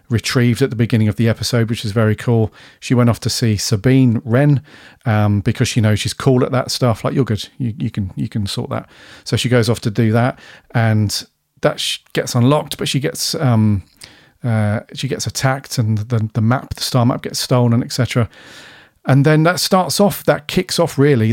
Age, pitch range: 40-59, 110-130 Hz